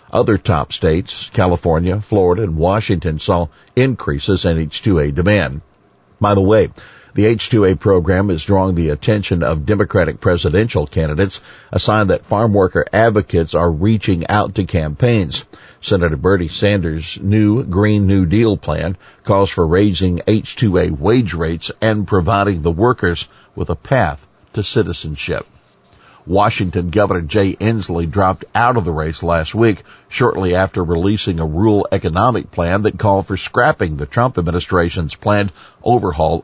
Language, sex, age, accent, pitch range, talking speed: English, male, 50-69, American, 85-105 Hz, 145 wpm